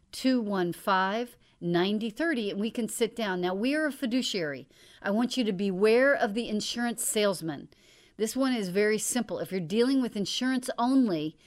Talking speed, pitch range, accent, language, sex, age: 155 wpm, 190-240 Hz, American, English, female, 40-59